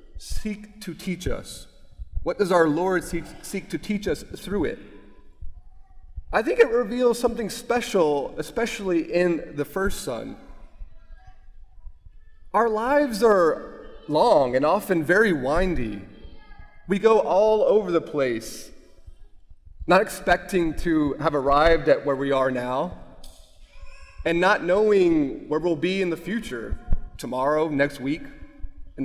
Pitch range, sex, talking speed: 110-185 Hz, male, 130 wpm